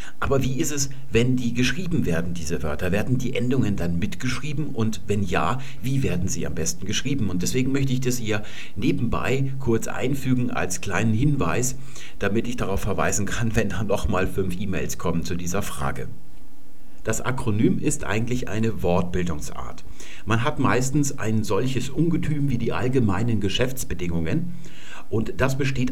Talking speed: 160 wpm